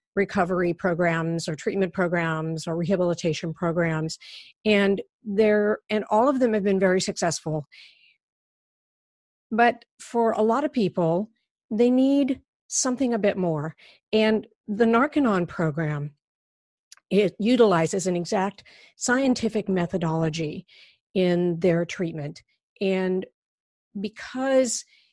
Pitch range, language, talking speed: 170-215 Hz, English, 105 wpm